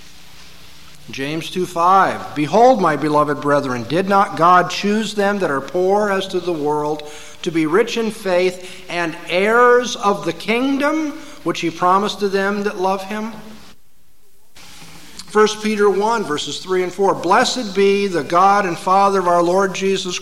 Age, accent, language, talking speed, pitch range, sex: 50-69, American, English, 155 wpm, 150-215 Hz, male